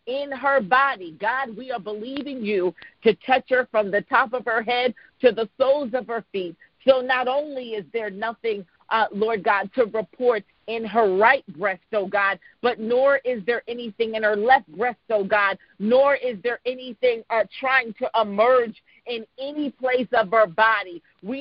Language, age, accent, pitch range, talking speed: English, 40-59, American, 215-255 Hz, 185 wpm